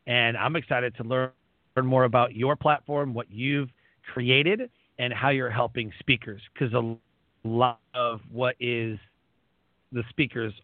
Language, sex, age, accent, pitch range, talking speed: English, male, 40-59, American, 115-155 Hz, 145 wpm